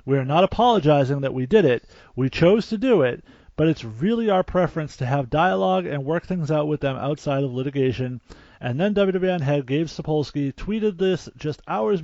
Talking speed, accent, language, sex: 200 wpm, American, English, male